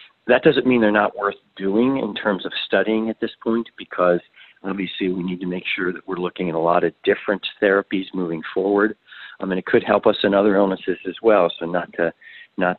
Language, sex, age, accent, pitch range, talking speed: English, male, 40-59, American, 85-105 Hz, 225 wpm